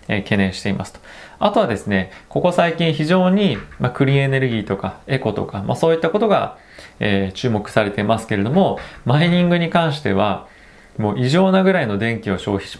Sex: male